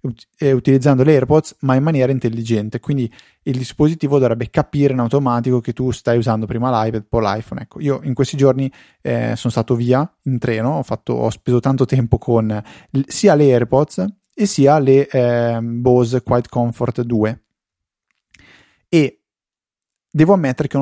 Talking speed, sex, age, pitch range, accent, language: 165 wpm, male, 30-49, 115-130 Hz, native, Italian